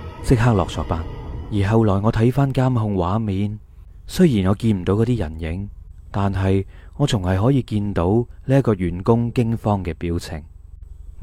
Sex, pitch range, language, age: male, 90-125 Hz, Chinese, 20-39